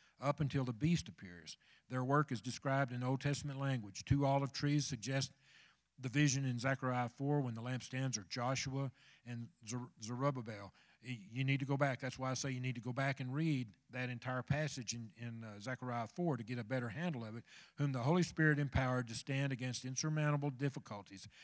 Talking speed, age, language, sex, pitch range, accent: 195 wpm, 50-69, English, male, 120-140 Hz, American